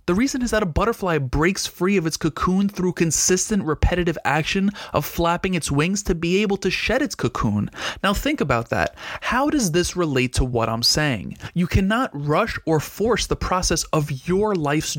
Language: English